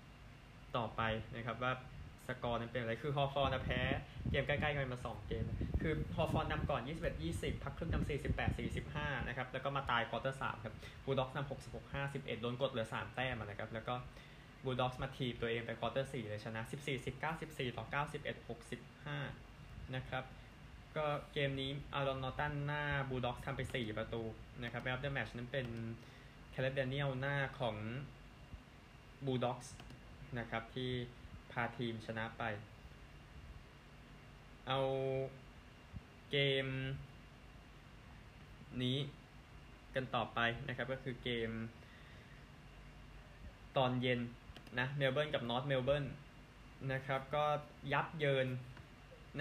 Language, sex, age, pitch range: Thai, male, 20-39, 120-140 Hz